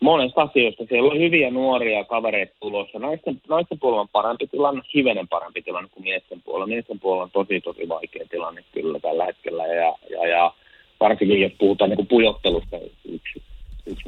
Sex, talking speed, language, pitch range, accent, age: male, 160 wpm, Finnish, 85-105 Hz, native, 30-49